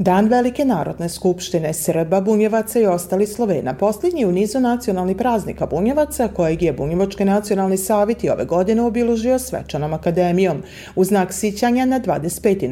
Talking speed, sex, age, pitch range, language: 145 wpm, female, 40-59, 170-235 Hz, Croatian